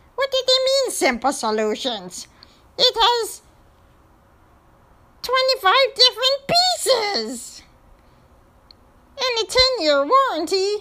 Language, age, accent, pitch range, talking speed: English, 40-59, American, 245-360 Hz, 85 wpm